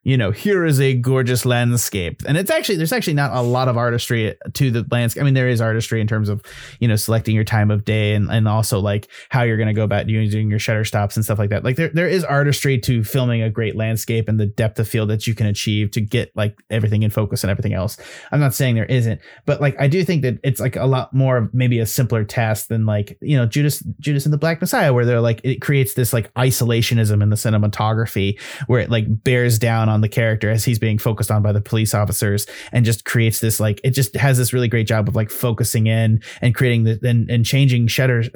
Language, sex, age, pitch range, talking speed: English, male, 30-49, 110-130 Hz, 255 wpm